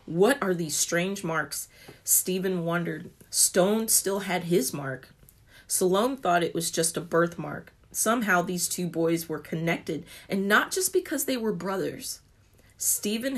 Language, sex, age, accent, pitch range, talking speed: English, female, 30-49, American, 160-200 Hz, 150 wpm